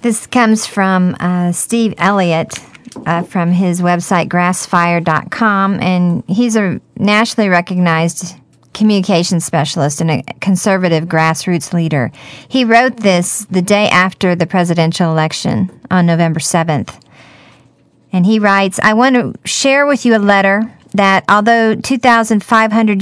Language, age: English, 40-59